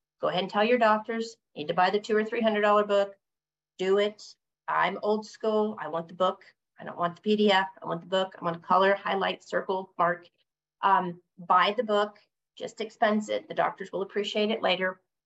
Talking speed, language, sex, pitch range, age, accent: 205 wpm, English, female, 185-215 Hz, 40-59, American